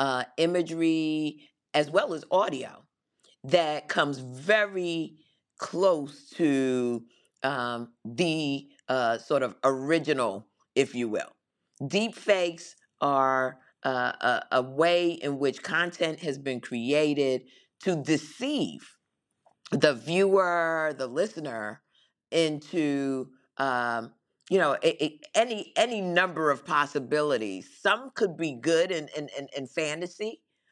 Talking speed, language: 115 wpm, English